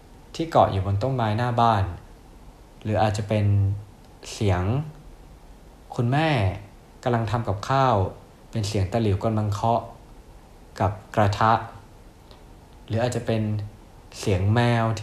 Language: Thai